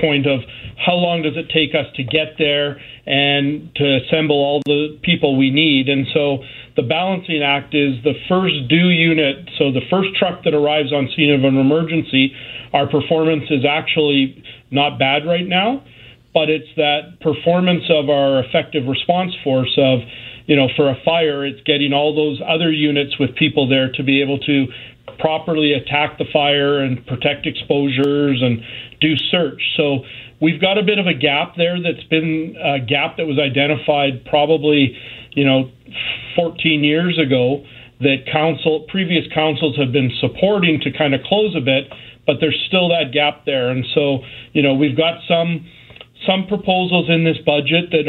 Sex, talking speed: male, 175 wpm